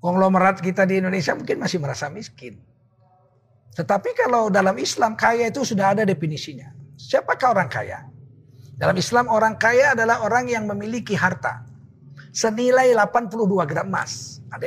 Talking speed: 140 wpm